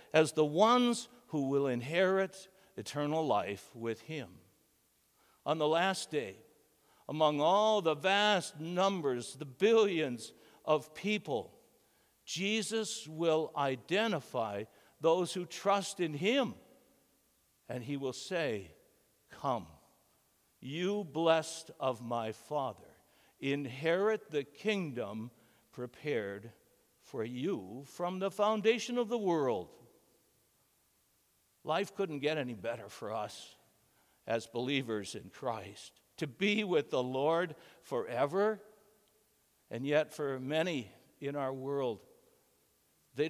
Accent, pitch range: American, 130-190 Hz